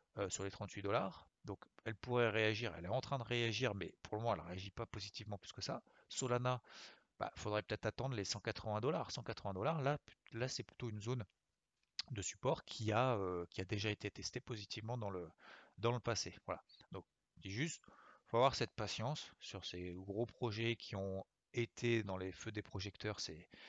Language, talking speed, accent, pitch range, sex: French, 210 wpm, French, 95-115 Hz, male